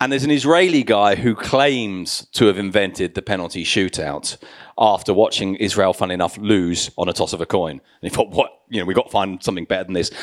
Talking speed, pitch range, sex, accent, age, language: 230 wpm, 100-150 Hz, male, British, 30-49, English